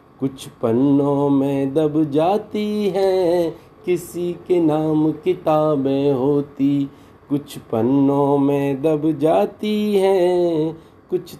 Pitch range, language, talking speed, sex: 140-175 Hz, Hindi, 95 wpm, male